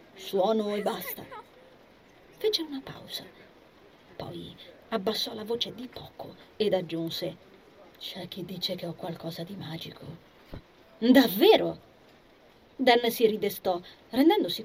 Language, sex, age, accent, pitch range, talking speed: Italian, female, 30-49, native, 180-230 Hz, 110 wpm